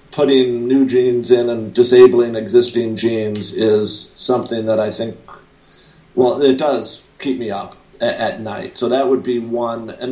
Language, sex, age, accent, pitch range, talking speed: English, male, 50-69, American, 120-145 Hz, 160 wpm